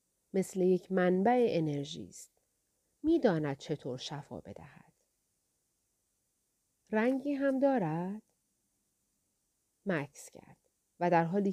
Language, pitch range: Persian, 165-235 Hz